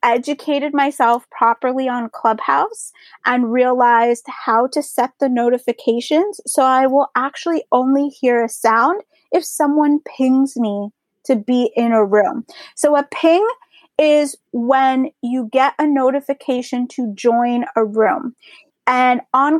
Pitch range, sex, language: 240-290 Hz, female, English